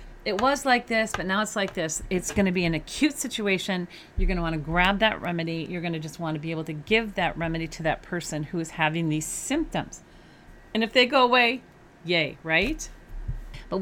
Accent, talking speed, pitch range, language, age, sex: American, 225 wpm, 155-195 Hz, English, 40-59, female